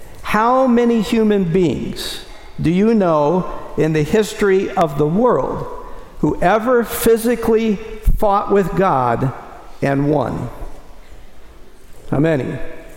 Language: English